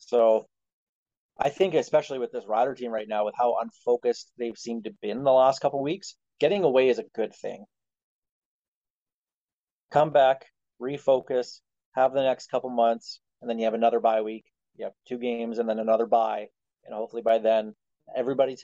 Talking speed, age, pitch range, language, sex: 180 wpm, 30-49, 115-140 Hz, English, male